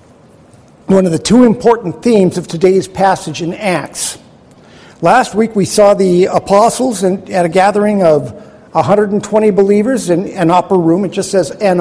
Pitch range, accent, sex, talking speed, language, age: 165-210 Hz, American, male, 160 wpm, English, 50-69